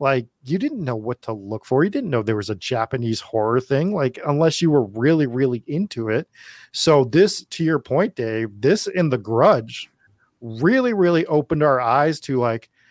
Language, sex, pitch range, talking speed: English, male, 115-150 Hz, 195 wpm